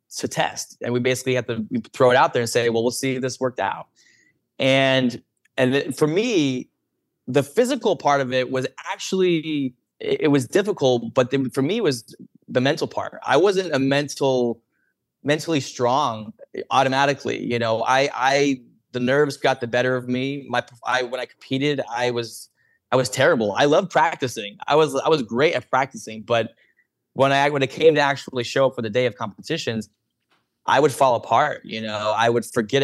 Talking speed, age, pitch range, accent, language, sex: 190 wpm, 20-39, 120-140 Hz, American, English, male